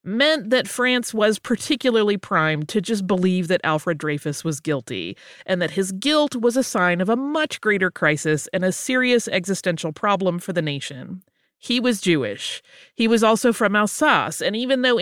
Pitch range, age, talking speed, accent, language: 170-235 Hz, 30-49, 180 wpm, American, English